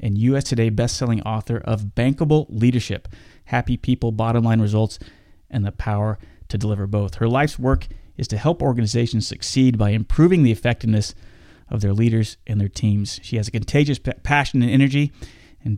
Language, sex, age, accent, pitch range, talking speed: English, male, 30-49, American, 105-130 Hz, 175 wpm